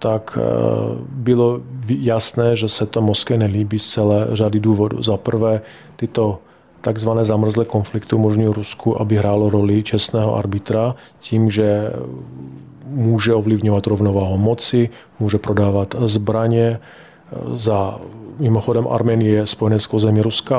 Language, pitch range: Czech, 105-115 Hz